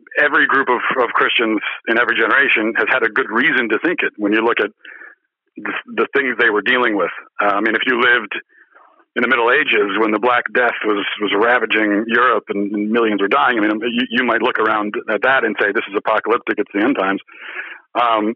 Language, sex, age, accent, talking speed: English, male, 50-69, American, 220 wpm